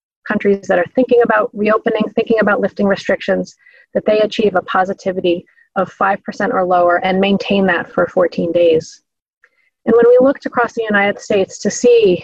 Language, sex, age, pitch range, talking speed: English, female, 30-49, 180-215 Hz, 170 wpm